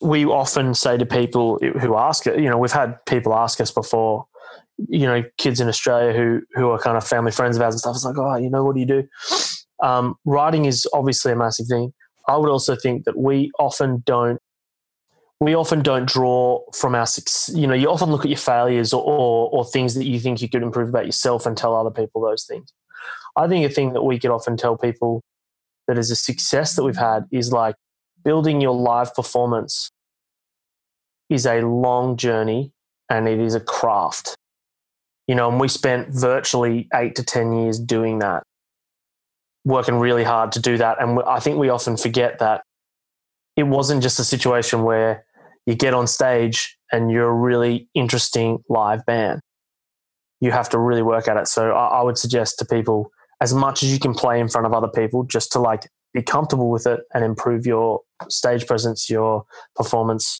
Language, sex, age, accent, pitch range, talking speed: English, male, 20-39, Australian, 115-130 Hz, 200 wpm